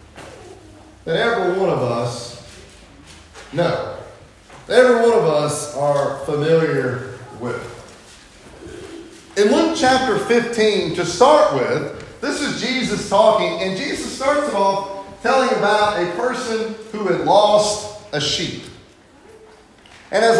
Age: 40-59